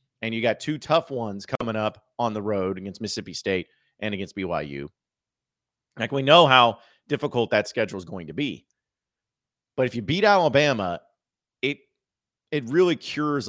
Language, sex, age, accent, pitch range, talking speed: English, male, 40-59, American, 110-145 Hz, 165 wpm